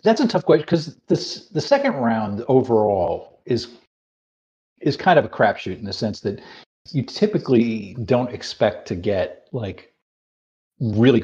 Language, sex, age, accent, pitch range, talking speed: English, male, 40-59, American, 100-125 Hz, 150 wpm